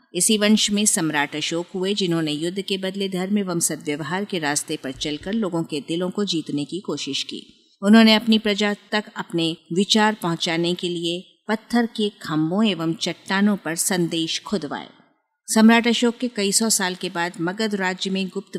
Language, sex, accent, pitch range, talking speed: Hindi, female, native, 165-205 Hz, 180 wpm